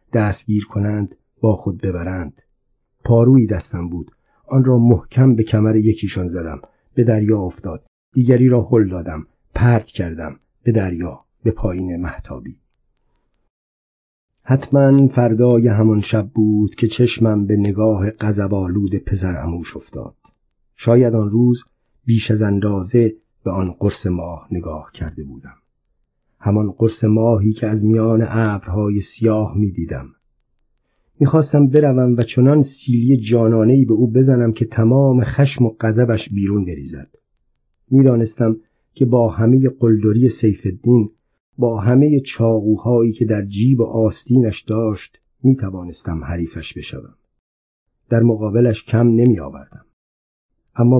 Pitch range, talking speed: 95-120 Hz, 120 wpm